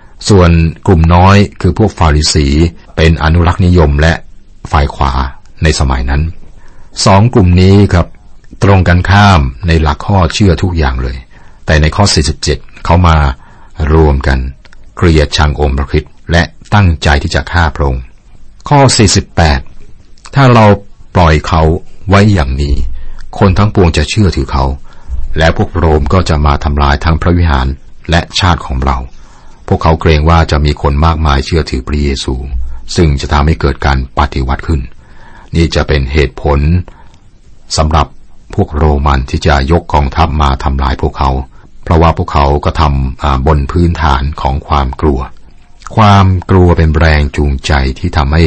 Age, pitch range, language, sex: 60-79, 70-90 Hz, Thai, male